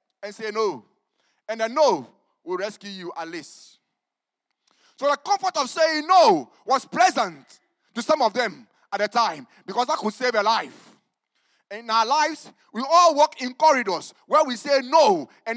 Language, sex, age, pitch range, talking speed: English, male, 30-49, 240-345 Hz, 175 wpm